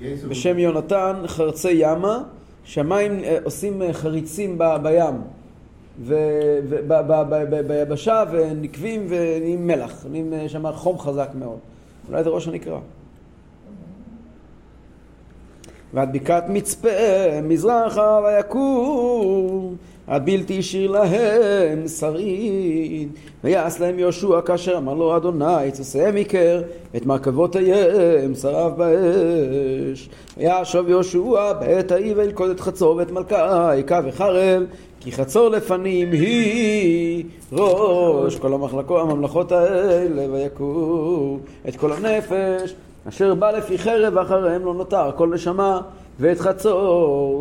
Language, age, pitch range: Hebrew, 40-59, 150-190 Hz